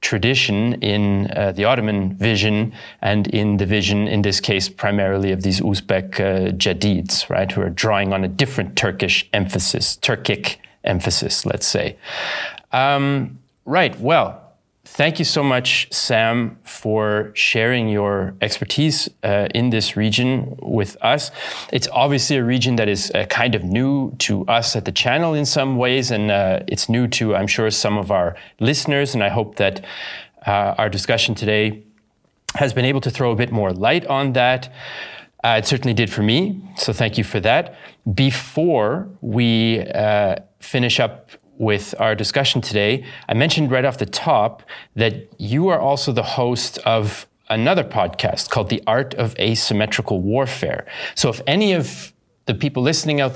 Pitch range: 105-130 Hz